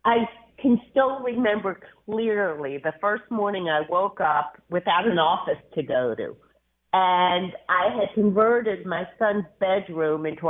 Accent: American